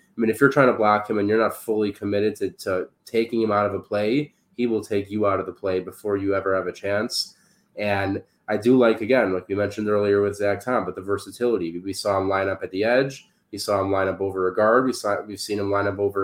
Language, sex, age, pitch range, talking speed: English, male, 20-39, 100-110 Hz, 275 wpm